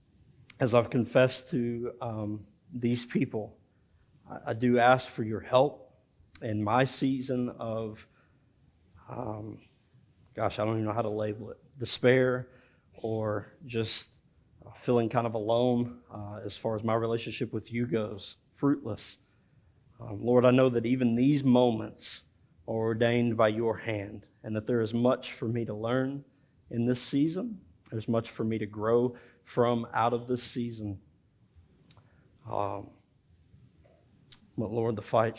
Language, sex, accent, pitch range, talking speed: English, male, American, 110-125 Hz, 145 wpm